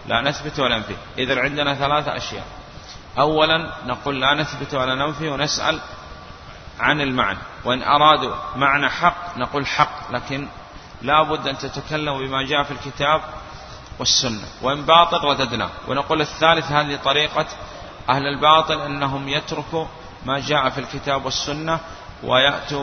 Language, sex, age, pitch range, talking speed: Arabic, male, 30-49, 130-155 Hz, 130 wpm